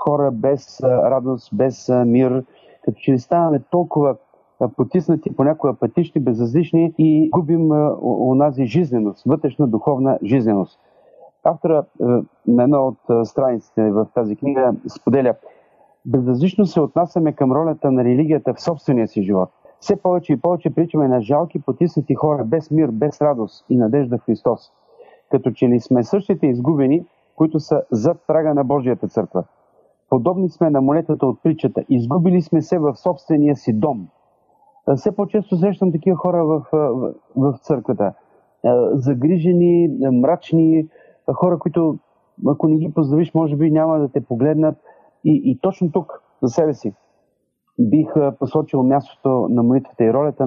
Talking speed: 145 wpm